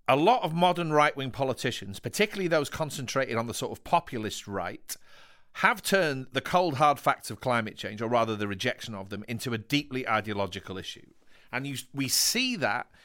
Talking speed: 185 wpm